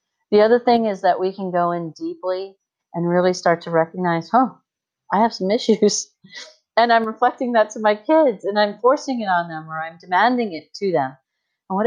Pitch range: 165-200 Hz